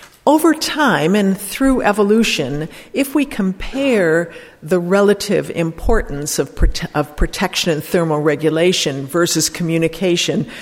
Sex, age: female, 50-69